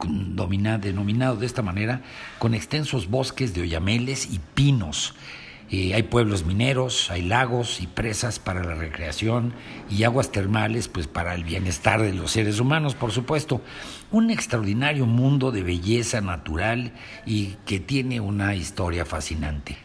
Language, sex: Spanish, male